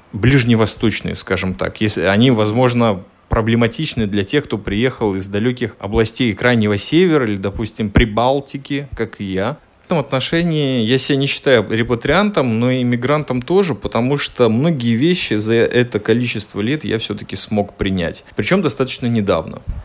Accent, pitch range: native, 100-130 Hz